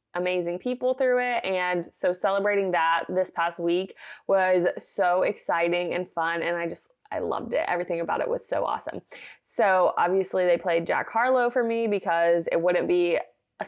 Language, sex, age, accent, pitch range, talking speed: English, female, 20-39, American, 175-205 Hz, 180 wpm